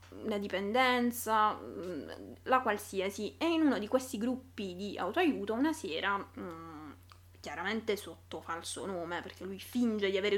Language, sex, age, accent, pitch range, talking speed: Italian, female, 20-39, native, 190-230 Hz, 135 wpm